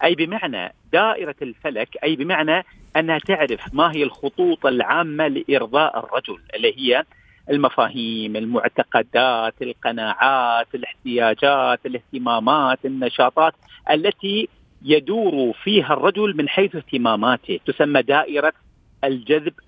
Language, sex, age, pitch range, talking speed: Arabic, male, 40-59, 140-200 Hz, 100 wpm